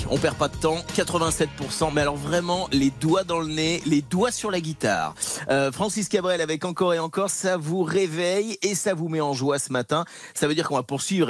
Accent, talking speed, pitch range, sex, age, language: French, 230 wpm, 130-175 Hz, male, 30-49, French